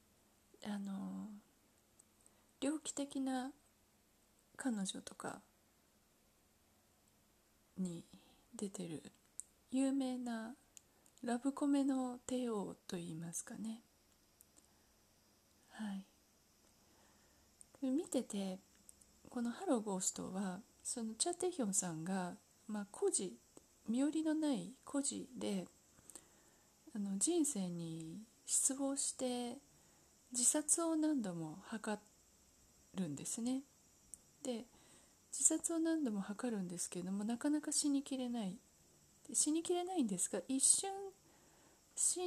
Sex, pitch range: female, 195-275 Hz